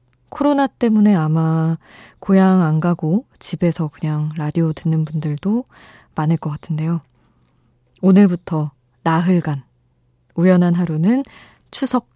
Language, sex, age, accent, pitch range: Korean, female, 20-39, native, 145-185 Hz